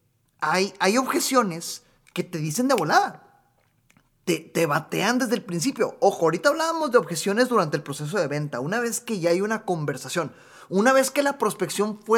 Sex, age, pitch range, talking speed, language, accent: male, 30-49, 165-235 Hz, 180 wpm, Spanish, Mexican